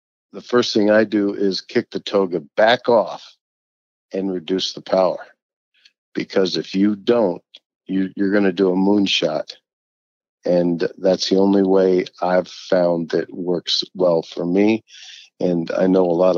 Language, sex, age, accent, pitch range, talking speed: English, male, 50-69, American, 90-100 Hz, 155 wpm